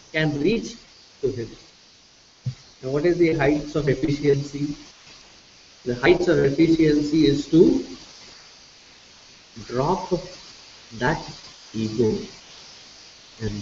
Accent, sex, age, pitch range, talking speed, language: Indian, male, 50-69, 130-165 Hz, 95 wpm, English